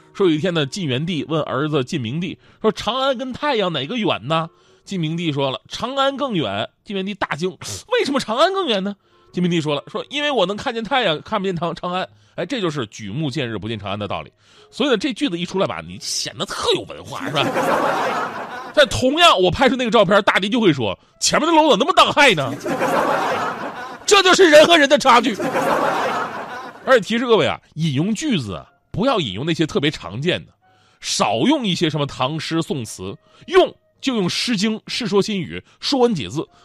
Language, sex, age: Chinese, male, 30-49